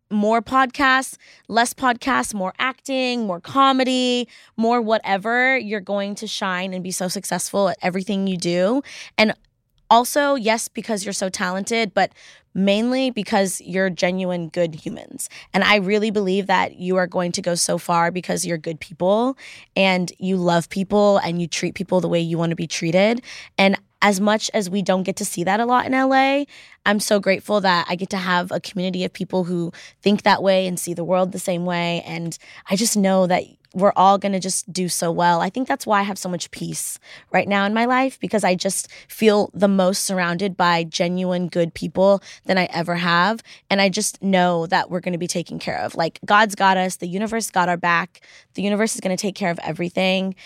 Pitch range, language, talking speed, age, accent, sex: 180-210 Hz, English, 205 wpm, 20-39, American, female